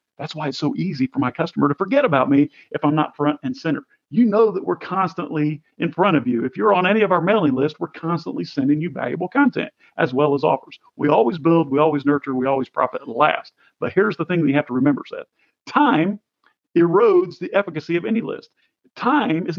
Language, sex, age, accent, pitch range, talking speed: English, male, 50-69, American, 155-205 Hz, 230 wpm